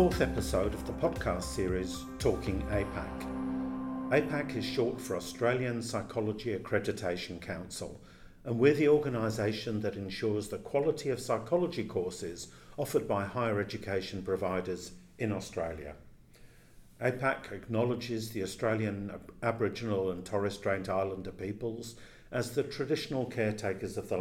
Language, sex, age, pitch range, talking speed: English, male, 50-69, 95-120 Hz, 125 wpm